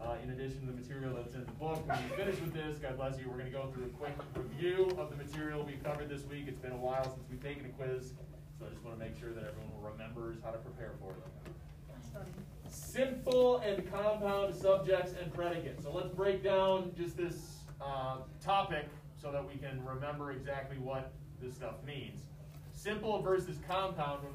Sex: male